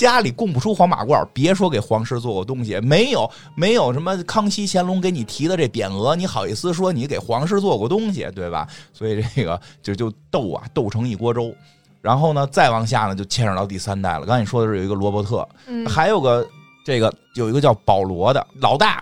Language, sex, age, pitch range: Chinese, male, 20-39, 100-145 Hz